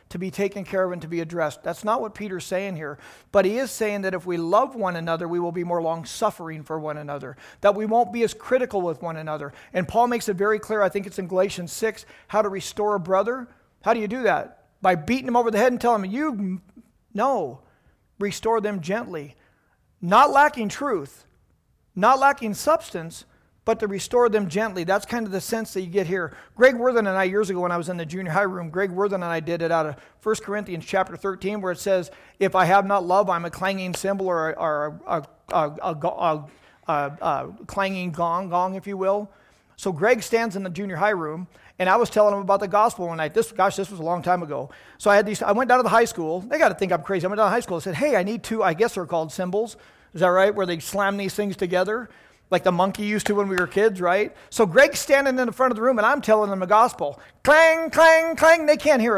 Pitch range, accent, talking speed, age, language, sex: 180-230 Hz, American, 250 wpm, 40-59, English, male